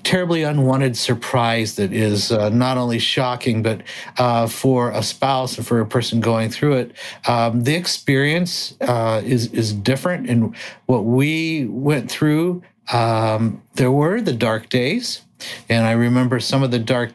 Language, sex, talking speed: English, male, 160 wpm